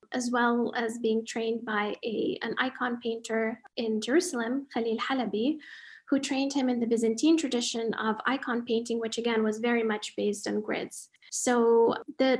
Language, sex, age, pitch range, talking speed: English, female, 10-29, 225-270 Hz, 165 wpm